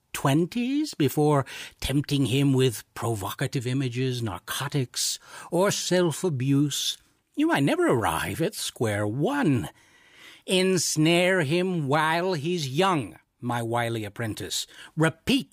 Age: 60-79